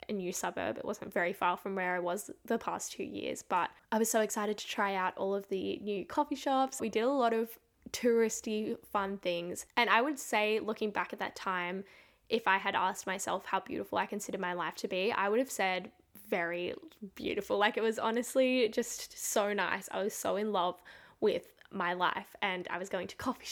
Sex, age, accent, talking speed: female, 10-29, Australian, 220 wpm